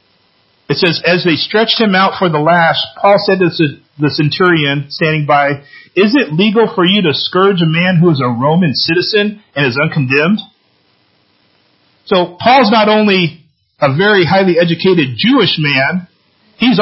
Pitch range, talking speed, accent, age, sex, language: 155-205 Hz, 160 wpm, American, 40-59, male, English